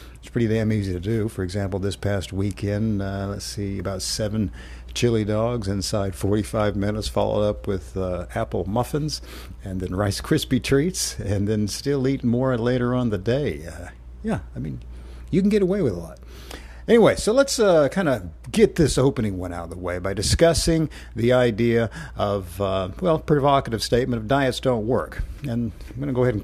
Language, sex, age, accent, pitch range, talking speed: English, male, 50-69, American, 100-130 Hz, 190 wpm